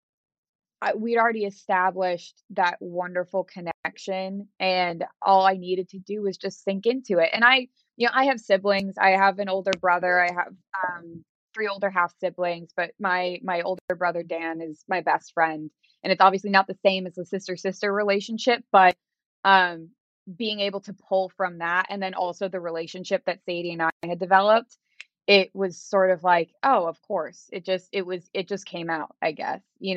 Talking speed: 190 wpm